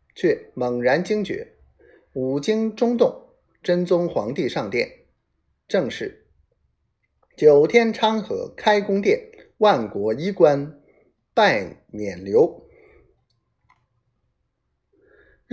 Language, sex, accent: Chinese, male, native